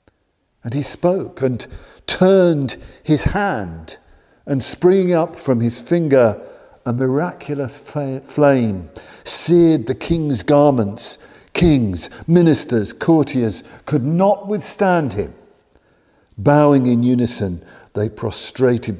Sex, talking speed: male, 100 wpm